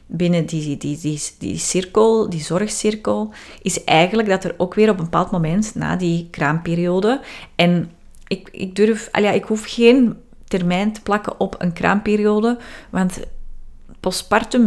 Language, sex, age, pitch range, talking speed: Dutch, female, 30-49, 170-210 Hz, 160 wpm